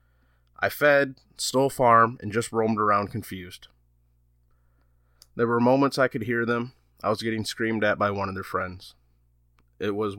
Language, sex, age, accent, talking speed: English, male, 20-39, American, 165 wpm